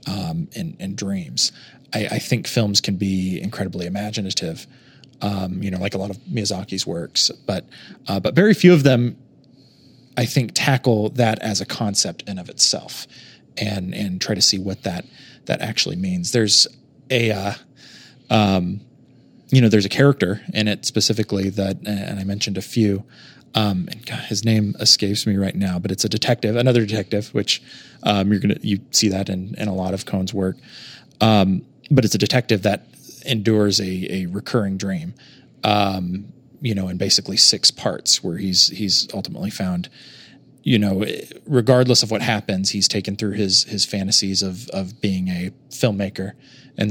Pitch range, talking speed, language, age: 95-120 Hz, 175 wpm, English, 30-49